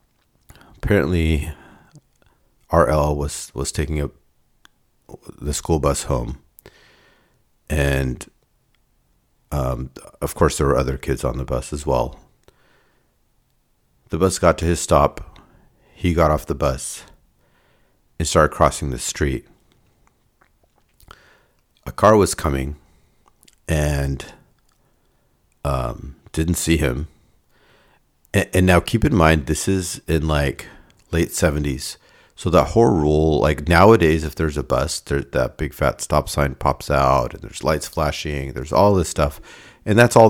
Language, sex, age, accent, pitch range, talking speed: English, male, 50-69, American, 70-85 Hz, 130 wpm